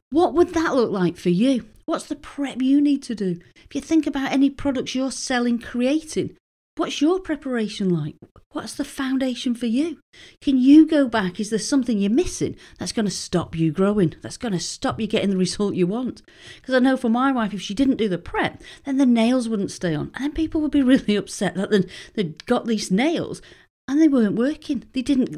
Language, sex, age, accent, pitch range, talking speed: English, female, 40-59, British, 185-265 Hz, 220 wpm